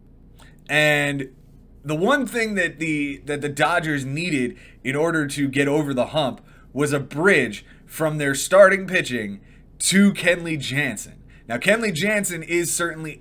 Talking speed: 145 wpm